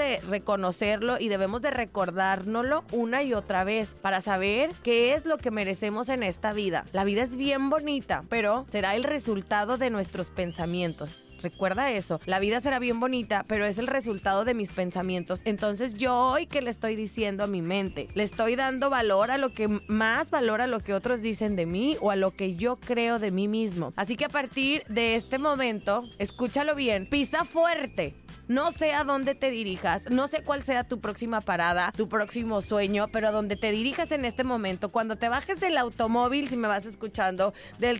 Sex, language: female, Spanish